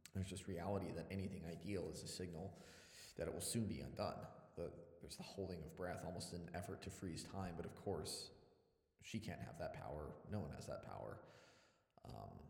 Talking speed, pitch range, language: 190 wpm, 85-95 Hz, English